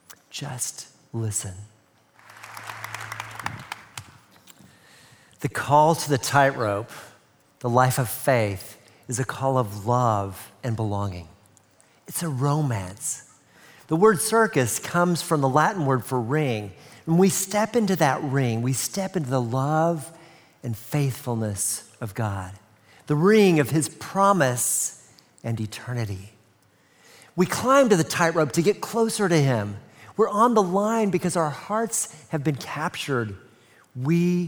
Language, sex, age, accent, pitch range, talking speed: English, male, 50-69, American, 115-165 Hz, 130 wpm